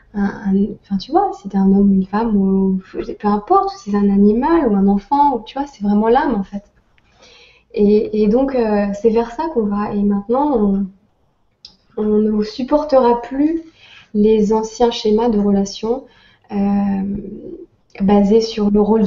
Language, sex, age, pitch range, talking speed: French, female, 20-39, 205-250 Hz, 165 wpm